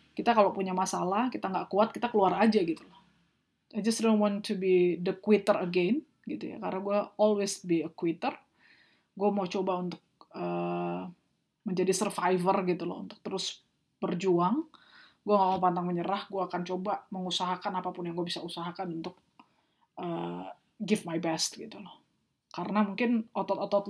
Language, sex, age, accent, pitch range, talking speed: Indonesian, female, 20-39, native, 180-215 Hz, 165 wpm